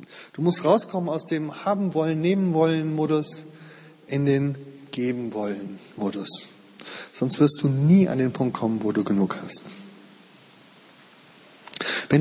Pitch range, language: 125-175 Hz, German